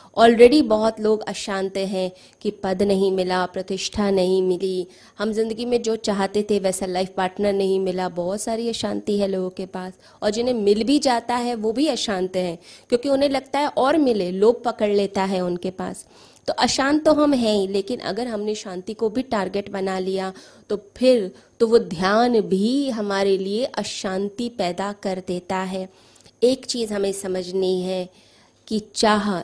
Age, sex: 20-39, female